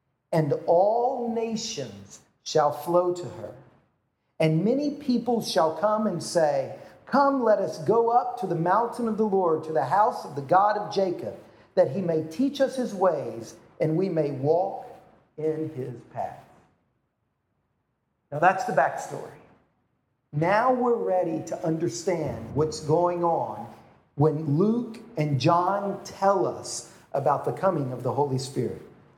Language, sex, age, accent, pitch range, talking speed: English, male, 50-69, American, 165-230 Hz, 150 wpm